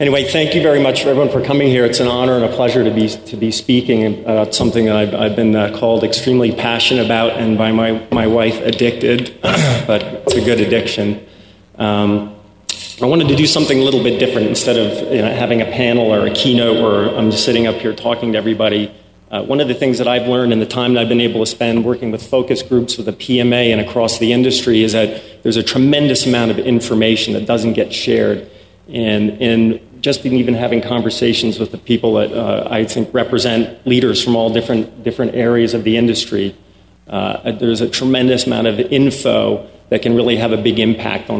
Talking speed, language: 220 wpm, English